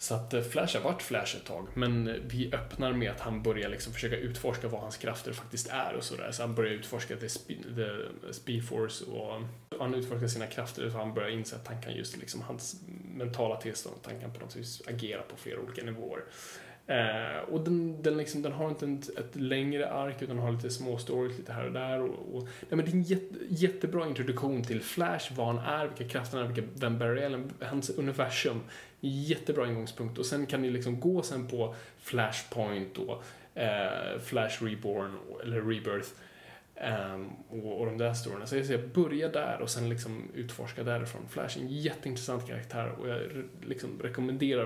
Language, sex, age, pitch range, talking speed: Swedish, male, 20-39, 115-135 Hz, 200 wpm